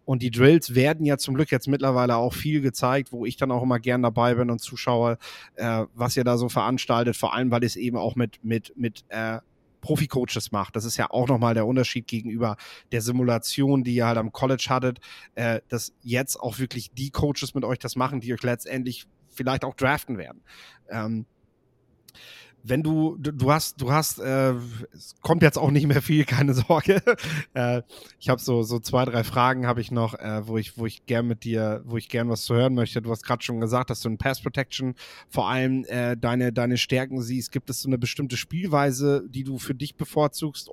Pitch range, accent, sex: 115-135 Hz, German, male